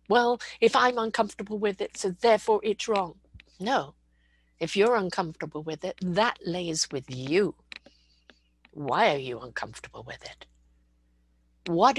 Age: 60-79